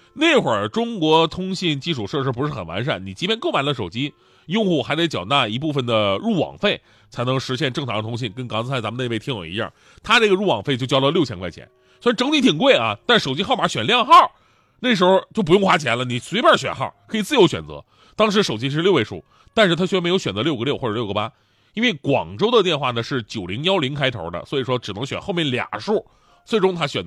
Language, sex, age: Chinese, male, 30-49